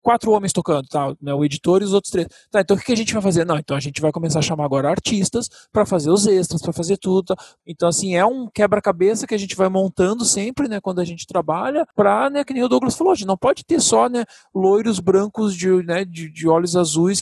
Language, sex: Portuguese, male